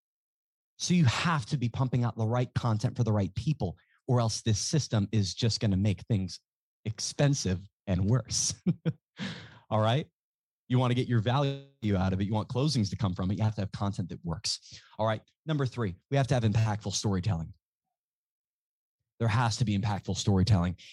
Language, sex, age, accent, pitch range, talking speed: English, male, 30-49, American, 95-120 Hz, 195 wpm